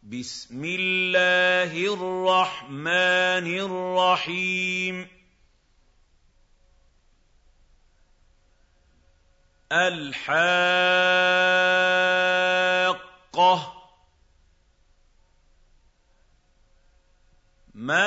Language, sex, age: Arabic, male, 50-69